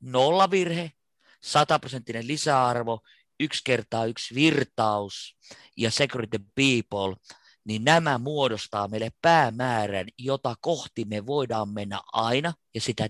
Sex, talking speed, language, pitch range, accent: male, 110 wpm, Finnish, 105-140 Hz, native